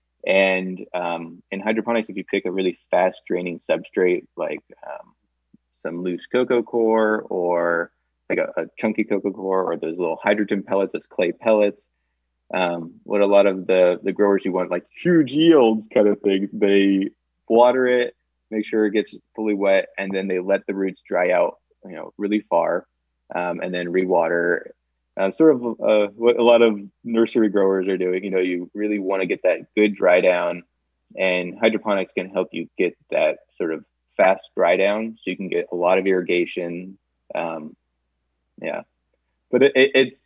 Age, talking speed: 20-39, 180 wpm